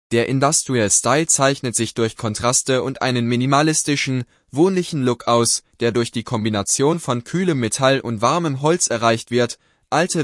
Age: 20-39